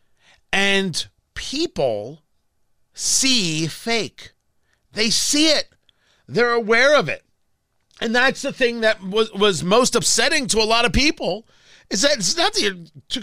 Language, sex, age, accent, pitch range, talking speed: English, male, 40-59, American, 200-290 Hz, 140 wpm